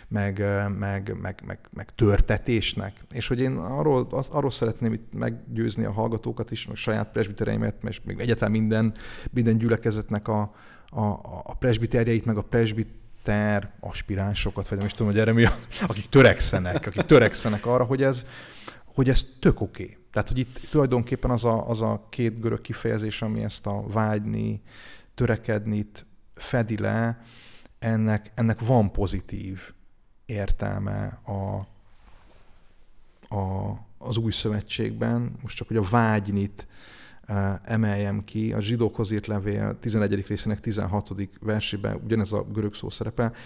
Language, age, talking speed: Hungarian, 30-49, 140 wpm